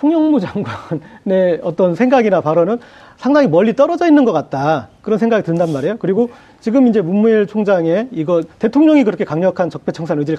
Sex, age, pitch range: male, 40-59, 165-260 Hz